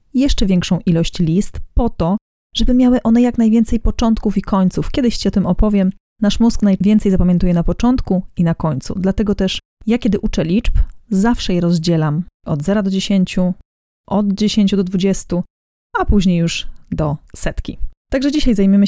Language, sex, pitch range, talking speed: Polish, female, 175-220 Hz, 170 wpm